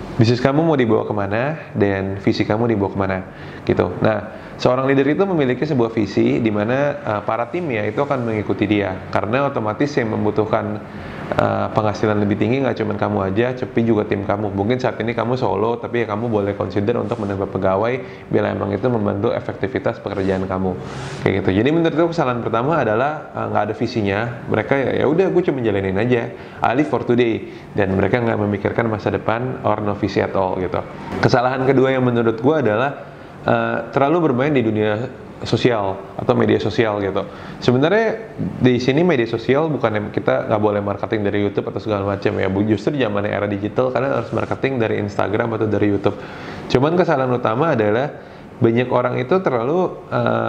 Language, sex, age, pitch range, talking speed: Indonesian, male, 20-39, 105-125 Hz, 180 wpm